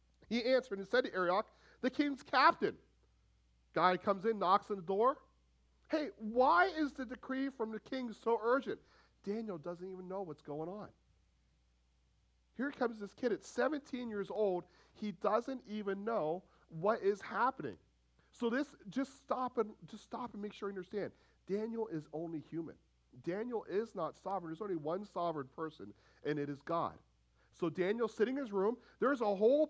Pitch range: 170-245 Hz